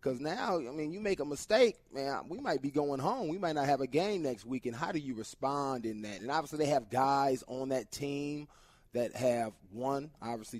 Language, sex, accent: English, male, American